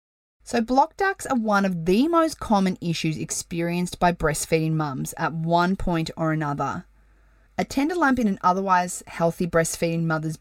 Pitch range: 165-220 Hz